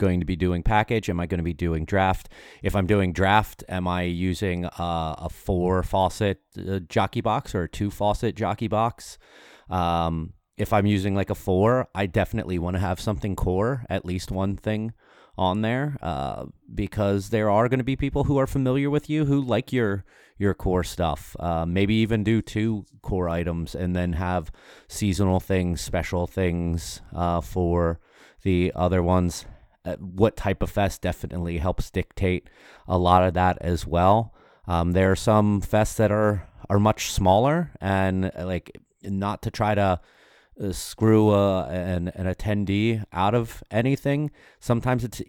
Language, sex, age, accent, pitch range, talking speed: English, male, 30-49, American, 90-105 Hz, 170 wpm